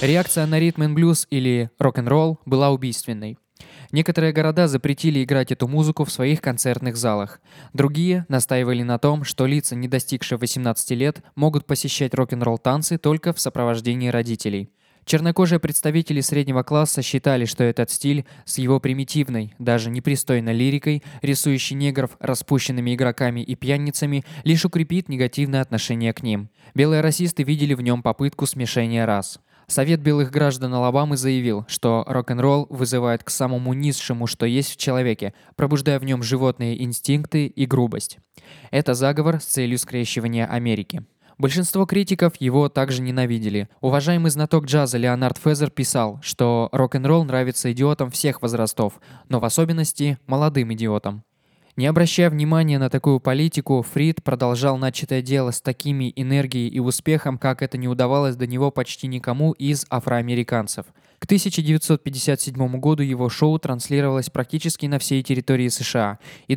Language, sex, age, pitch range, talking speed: Russian, male, 20-39, 125-145 Hz, 140 wpm